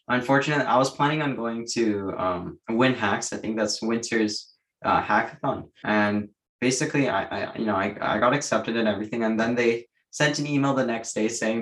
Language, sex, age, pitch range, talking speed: English, male, 20-39, 105-125 Hz, 195 wpm